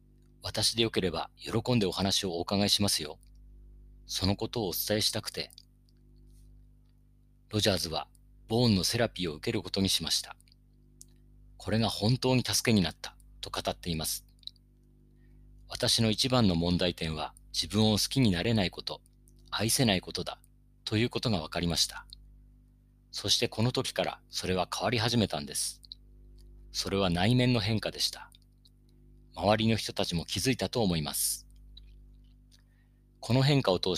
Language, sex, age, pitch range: Japanese, male, 40-59, 90-120 Hz